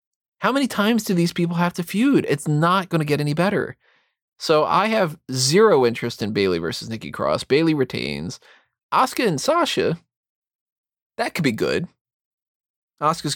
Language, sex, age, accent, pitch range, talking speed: English, male, 20-39, American, 120-160 Hz, 160 wpm